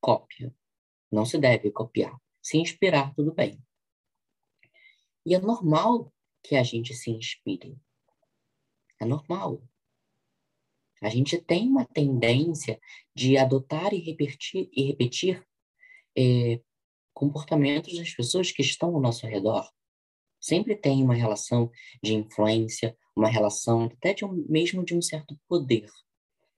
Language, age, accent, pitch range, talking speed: Portuguese, 10-29, Brazilian, 115-155 Hz, 115 wpm